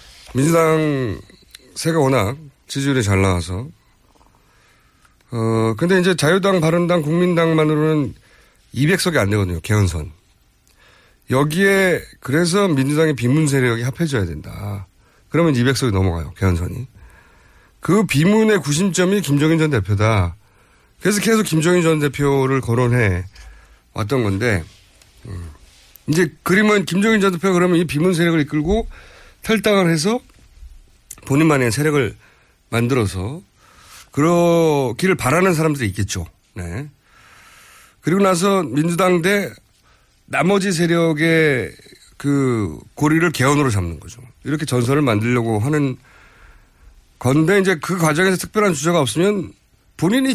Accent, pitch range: native, 105-170 Hz